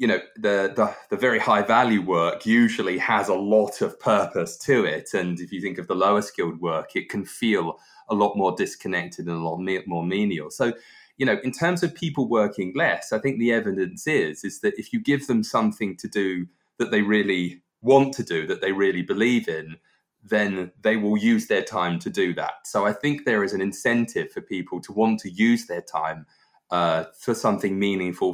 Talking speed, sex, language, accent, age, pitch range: 210 wpm, male, English, British, 20-39, 90-120 Hz